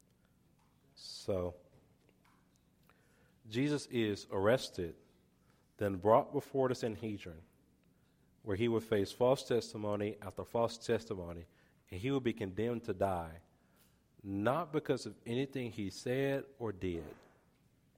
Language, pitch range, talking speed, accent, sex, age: English, 100-135 Hz, 110 wpm, American, male, 40-59